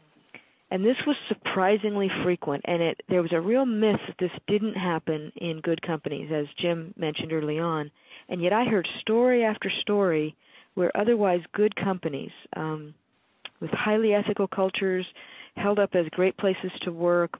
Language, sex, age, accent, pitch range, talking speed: English, female, 40-59, American, 170-200 Hz, 160 wpm